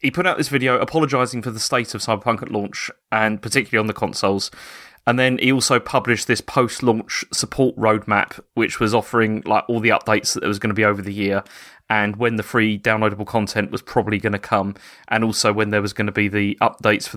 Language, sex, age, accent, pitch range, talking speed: English, male, 30-49, British, 105-125 Hz, 220 wpm